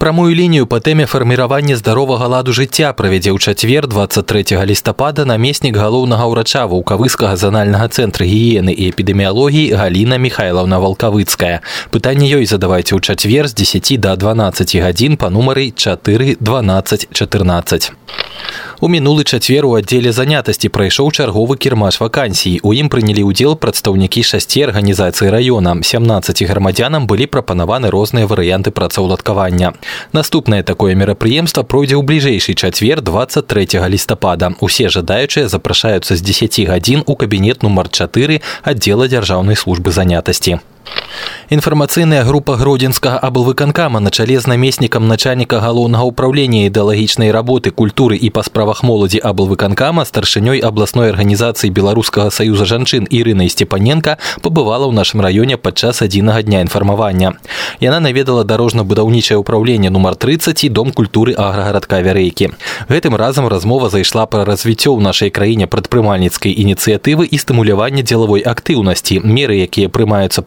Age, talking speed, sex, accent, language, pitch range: 20-39, 130 wpm, male, native, Russian, 100-130 Hz